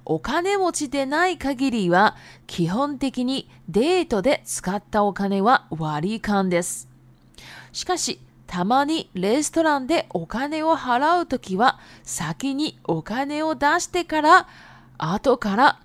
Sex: female